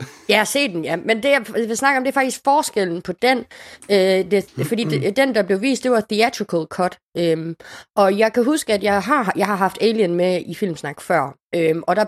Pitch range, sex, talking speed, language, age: 180-240 Hz, female, 245 wpm, Danish, 30-49